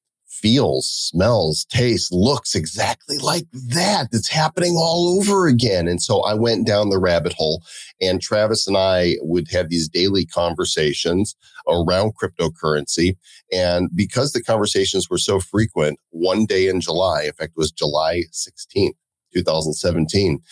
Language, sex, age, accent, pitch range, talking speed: English, male, 40-59, American, 90-120 Hz, 145 wpm